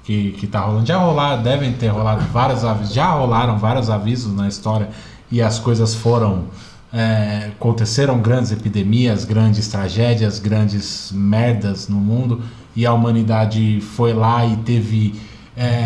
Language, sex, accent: Portuguese, male, Brazilian